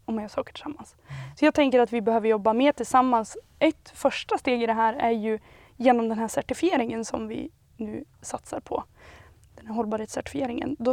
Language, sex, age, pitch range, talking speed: Swedish, female, 20-39, 230-275 Hz, 175 wpm